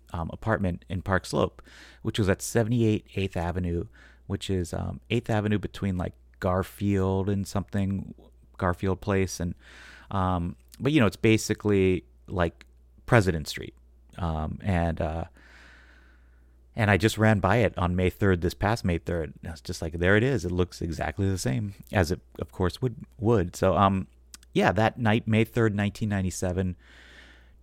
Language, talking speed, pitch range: English, 165 wpm, 80-105 Hz